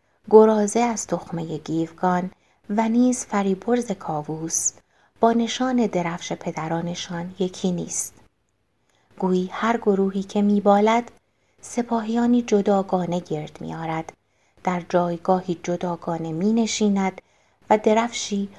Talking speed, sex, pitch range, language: 95 wpm, female, 170-220 Hz, Persian